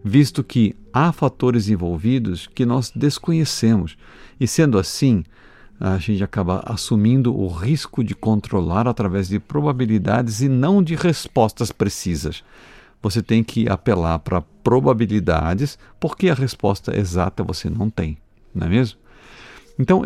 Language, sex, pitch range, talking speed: Portuguese, male, 95-125 Hz, 130 wpm